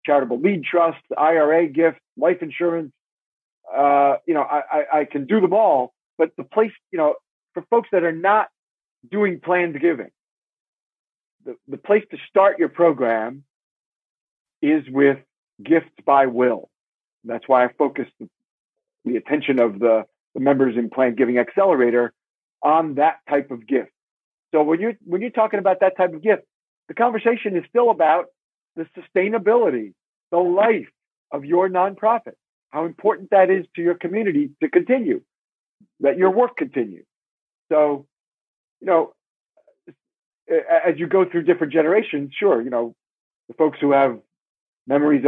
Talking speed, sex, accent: 155 wpm, male, American